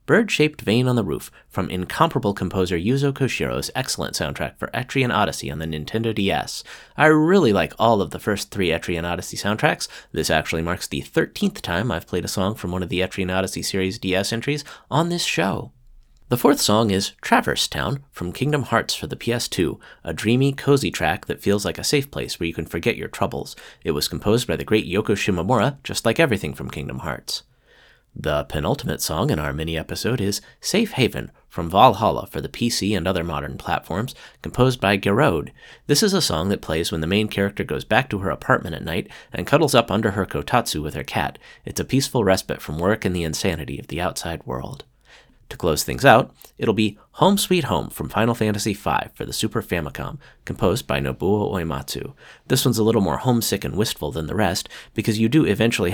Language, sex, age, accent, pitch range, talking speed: English, male, 30-49, American, 90-125 Hz, 205 wpm